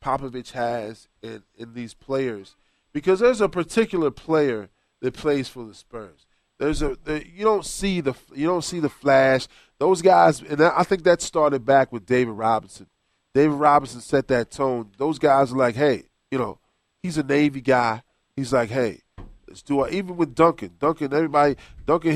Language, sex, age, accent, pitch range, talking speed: English, male, 20-39, American, 120-150 Hz, 180 wpm